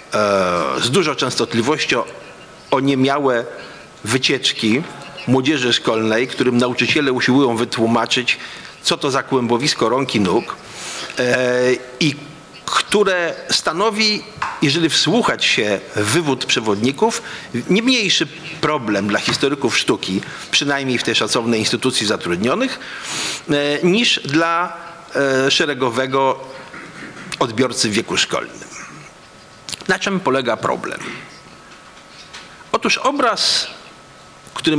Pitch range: 120-170 Hz